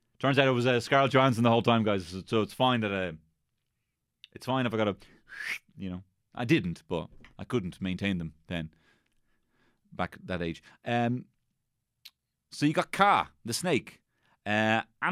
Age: 30-49